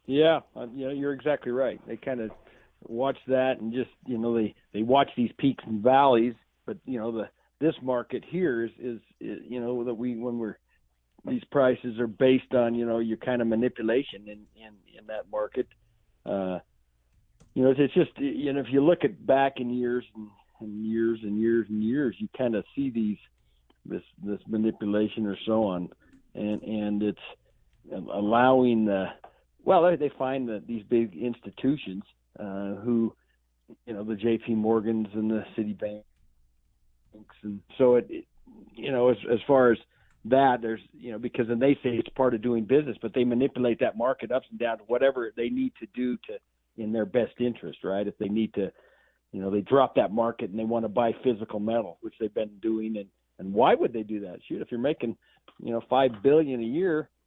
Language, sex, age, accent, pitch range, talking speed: English, male, 50-69, American, 105-130 Hz, 200 wpm